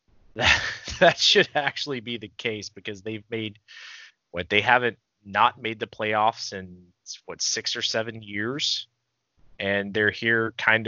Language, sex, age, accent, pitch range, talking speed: English, male, 20-39, American, 95-120 Hz, 150 wpm